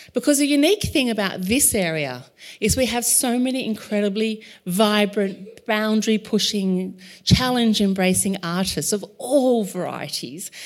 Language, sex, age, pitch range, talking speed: English, female, 40-59, 165-220 Hz, 115 wpm